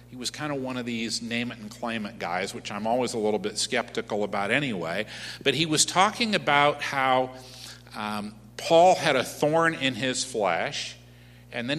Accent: American